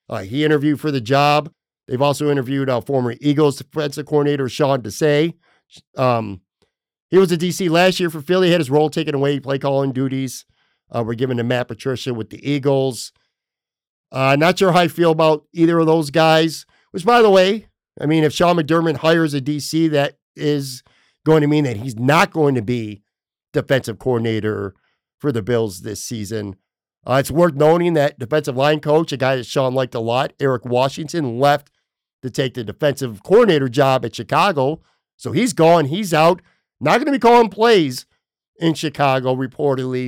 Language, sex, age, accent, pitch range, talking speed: English, male, 50-69, American, 130-160 Hz, 190 wpm